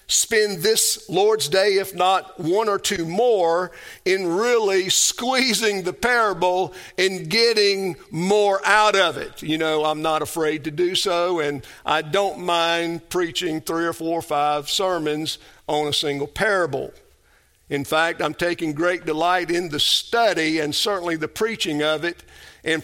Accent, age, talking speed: American, 50-69, 160 wpm